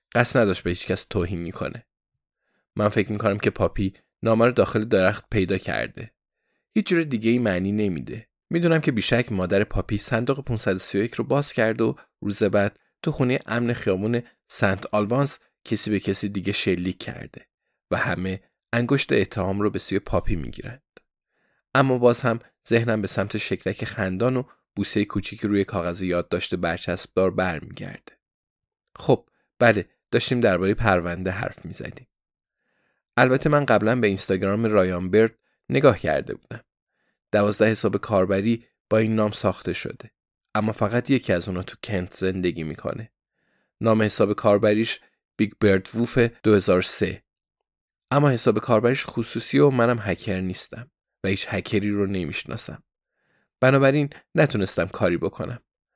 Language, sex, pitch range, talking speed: Persian, male, 95-120 Hz, 145 wpm